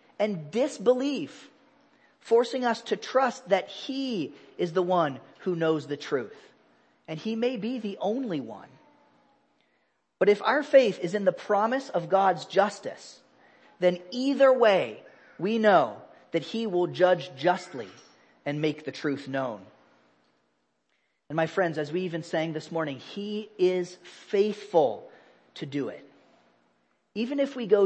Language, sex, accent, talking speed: English, male, American, 145 wpm